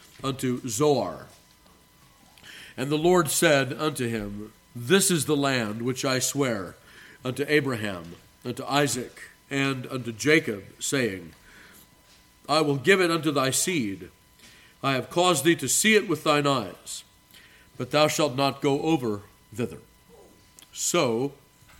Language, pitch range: English, 125-155 Hz